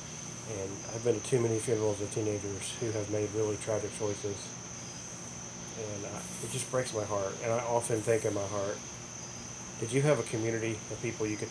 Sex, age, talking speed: male, 30-49, 200 wpm